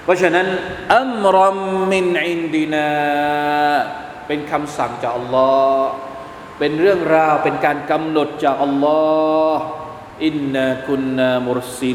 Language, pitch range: Thai, 145-190 Hz